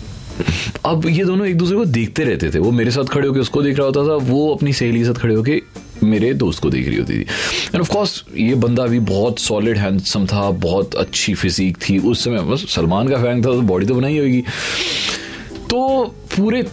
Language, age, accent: Hindi, 30-49, native